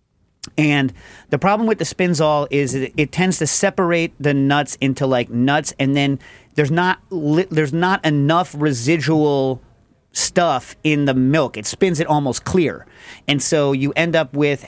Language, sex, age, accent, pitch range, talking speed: English, male, 40-59, American, 130-160 Hz, 170 wpm